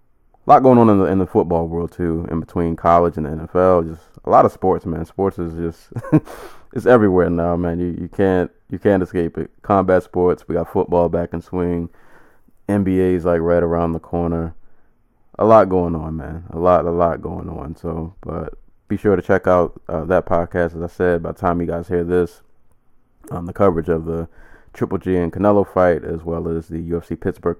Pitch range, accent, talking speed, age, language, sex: 85-95 Hz, American, 215 wpm, 20-39, English, male